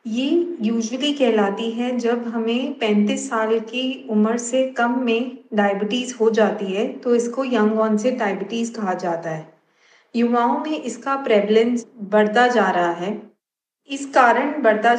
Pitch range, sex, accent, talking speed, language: 210-235 Hz, female, native, 150 wpm, Hindi